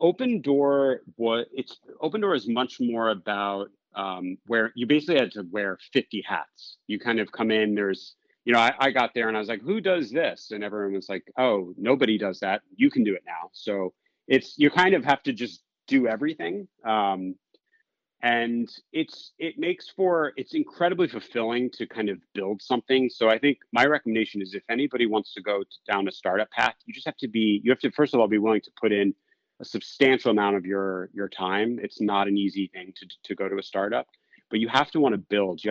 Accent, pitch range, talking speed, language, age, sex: American, 100-140 Hz, 225 wpm, English, 30-49, male